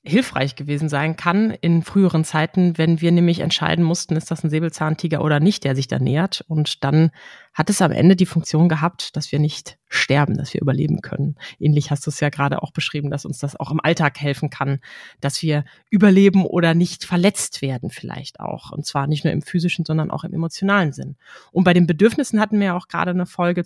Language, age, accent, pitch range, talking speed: German, 30-49, German, 155-195 Hz, 220 wpm